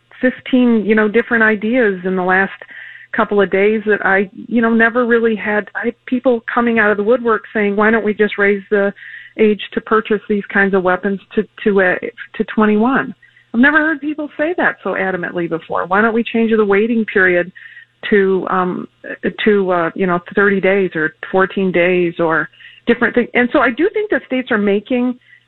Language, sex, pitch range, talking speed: English, female, 195-235 Hz, 200 wpm